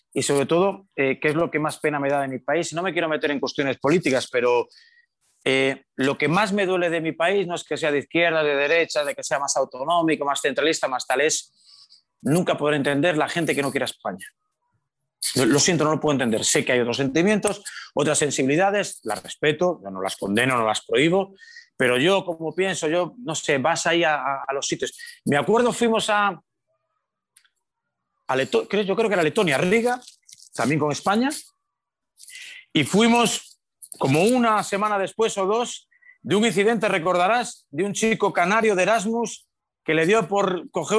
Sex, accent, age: male, Spanish, 30-49